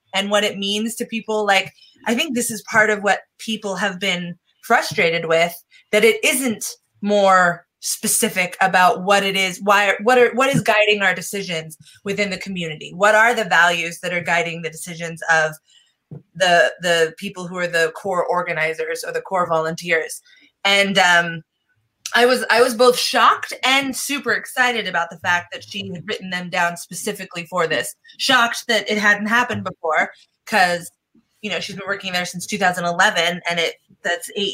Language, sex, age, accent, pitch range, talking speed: English, female, 20-39, American, 175-220 Hz, 175 wpm